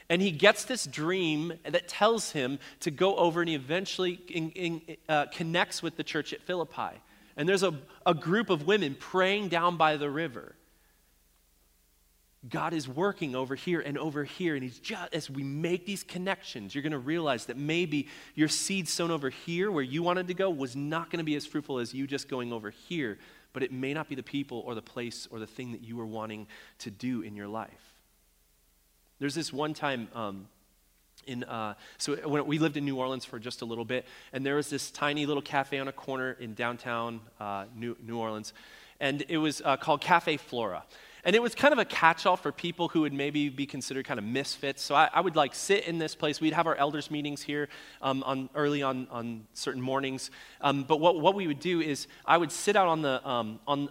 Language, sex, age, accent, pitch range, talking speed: English, male, 30-49, American, 125-165 Hz, 215 wpm